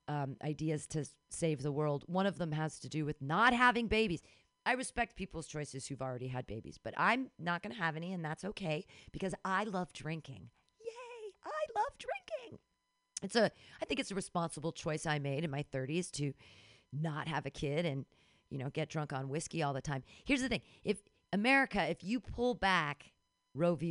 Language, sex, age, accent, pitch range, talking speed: English, female, 40-59, American, 150-205 Hz, 205 wpm